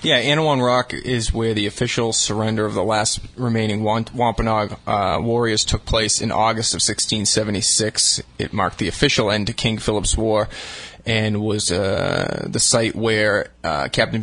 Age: 20-39